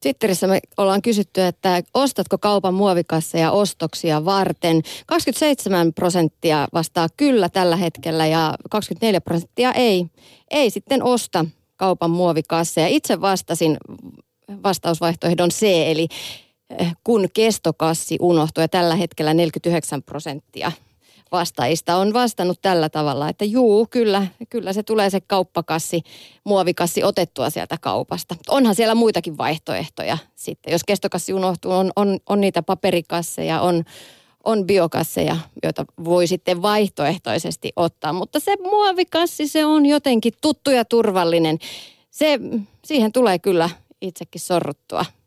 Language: Finnish